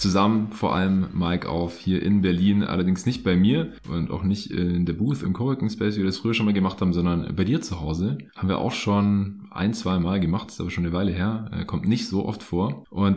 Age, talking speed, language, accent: 20-39, 250 wpm, German, German